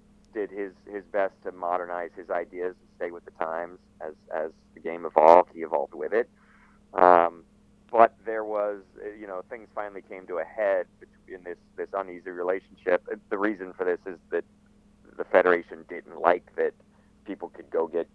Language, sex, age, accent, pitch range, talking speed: English, male, 40-59, American, 85-115 Hz, 180 wpm